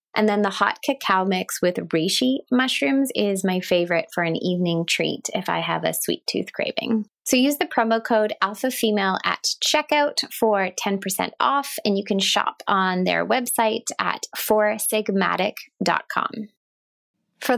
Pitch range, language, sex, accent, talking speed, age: 180-235 Hz, English, female, American, 150 wpm, 20-39